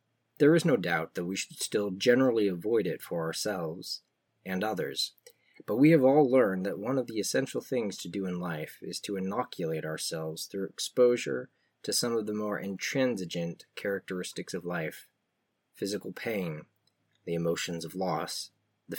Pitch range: 95-115 Hz